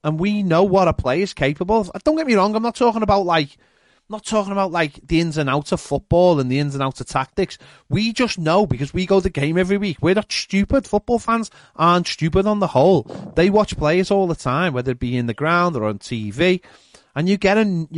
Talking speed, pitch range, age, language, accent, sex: 250 wpm, 140-190 Hz, 30-49, English, British, male